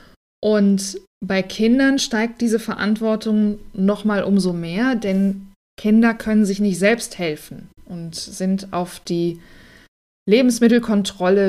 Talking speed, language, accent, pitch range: 110 wpm, German, German, 175-220 Hz